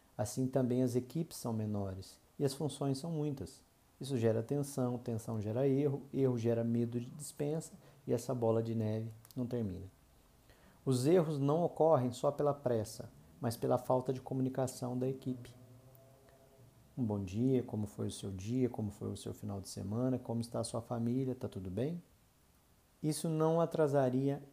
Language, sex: Portuguese, male